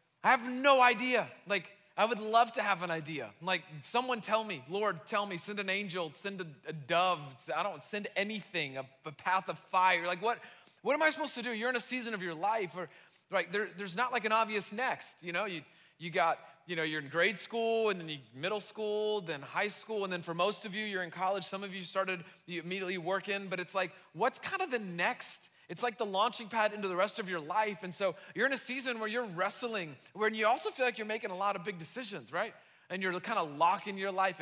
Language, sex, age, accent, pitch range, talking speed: English, male, 30-49, American, 175-215 Hz, 245 wpm